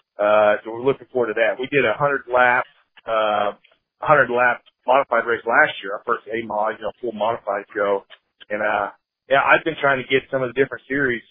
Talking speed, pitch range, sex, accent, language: 210 wpm, 115-135 Hz, male, American, English